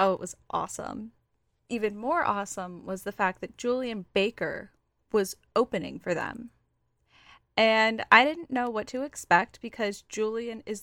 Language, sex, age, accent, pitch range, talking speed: English, female, 10-29, American, 195-245 Hz, 150 wpm